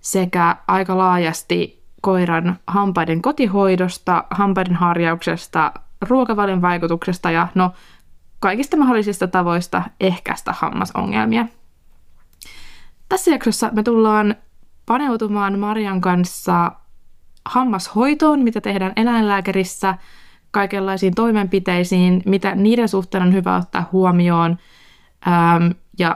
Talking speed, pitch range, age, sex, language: 85 wpm, 175-215 Hz, 20-39, female, Finnish